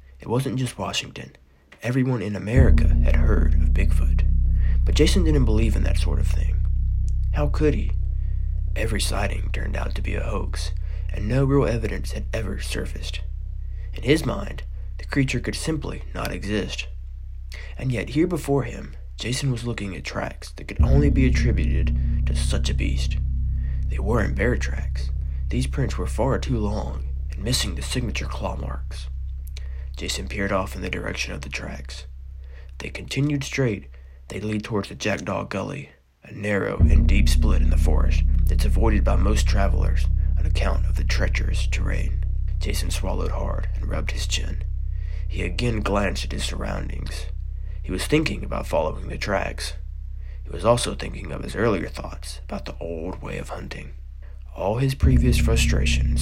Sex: male